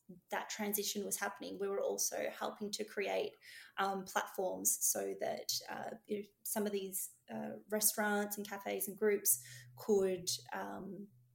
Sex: female